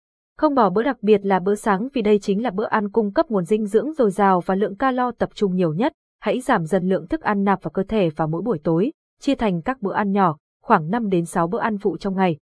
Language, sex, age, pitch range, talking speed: Vietnamese, female, 20-39, 185-240 Hz, 275 wpm